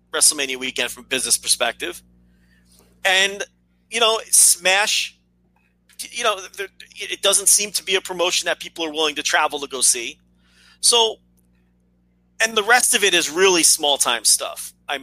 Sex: male